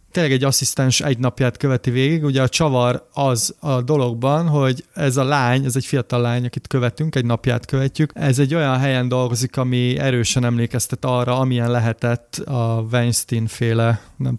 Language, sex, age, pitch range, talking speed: Hungarian, male, 30-49, 120-140 Hz, 165 wpm